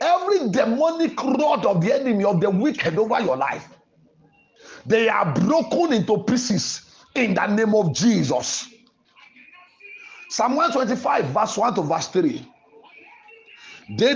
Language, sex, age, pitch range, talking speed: English, male, 50-69, 220-310 Hz, 125 wpm